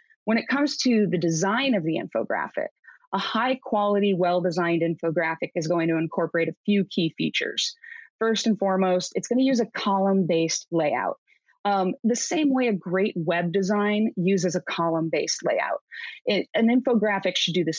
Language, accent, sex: English, American, female